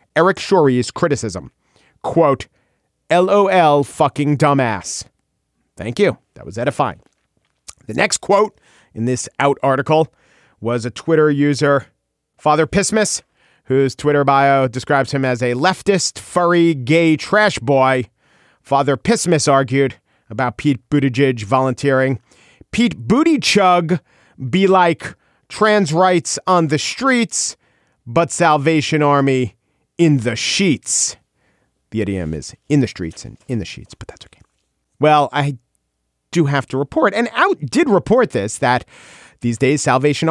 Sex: male